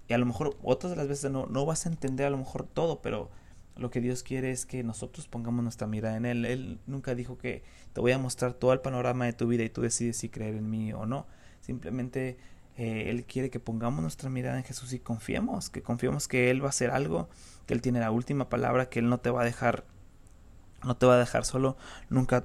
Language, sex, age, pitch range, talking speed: Spanish, male, 20-39, 115-130 Hz, 245 wpm